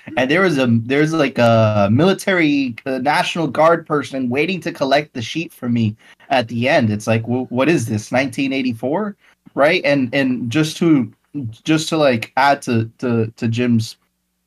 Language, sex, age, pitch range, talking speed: English, male, 20-39, 120-195 Hz, 175 wpm